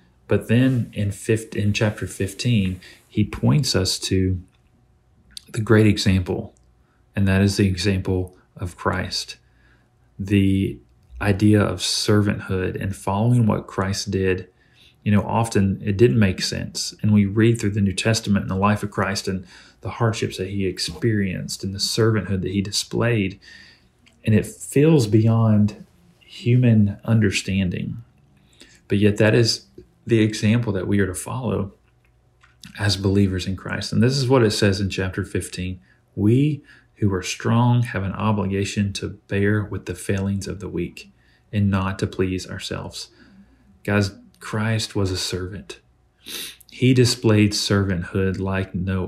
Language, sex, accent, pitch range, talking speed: English, male, American, 95-110 Hz, 150 wpm